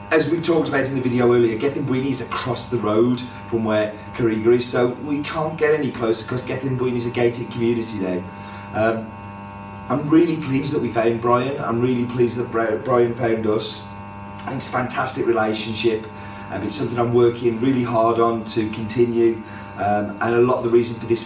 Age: 40-59